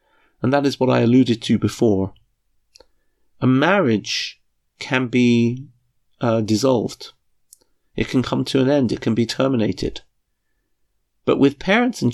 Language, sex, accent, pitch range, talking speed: English, male, British, 115-150 Hz, 140 wpm